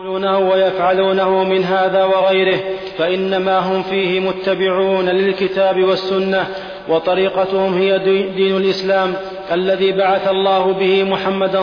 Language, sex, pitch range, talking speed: Arabic, male, 190-195 Hz, 105 wpm